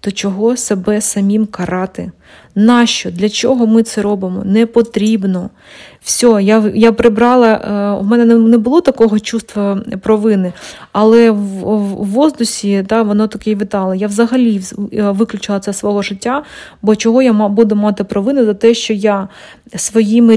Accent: native